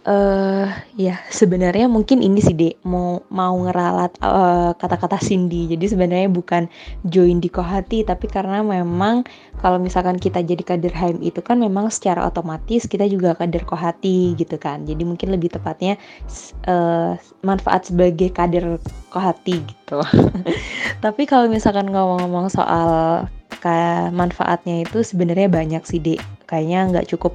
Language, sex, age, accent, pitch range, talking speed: Indonesian, female, 20-39, native, 170-195 Hz, 145 wpm